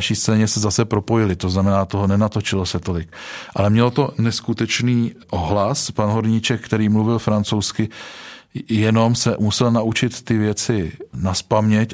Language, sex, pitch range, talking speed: Czech, male, 100-115 Hz, 140 wpm